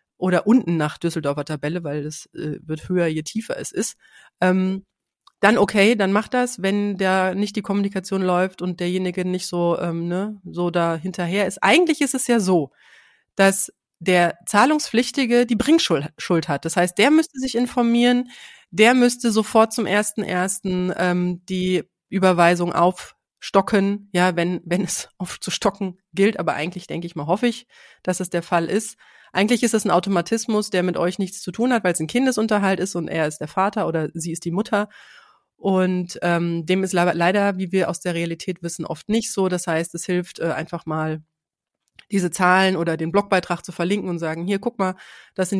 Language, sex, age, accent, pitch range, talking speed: German, female, 30-49, German, 170-205 Hz, 190 wpm